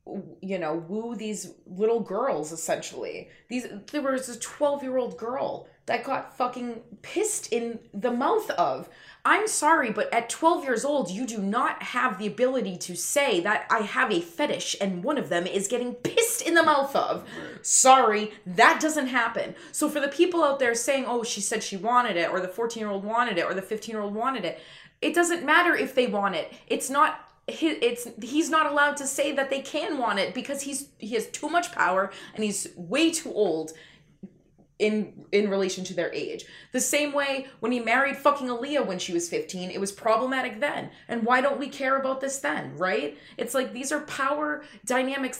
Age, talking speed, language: 20-39, 195 wpm, English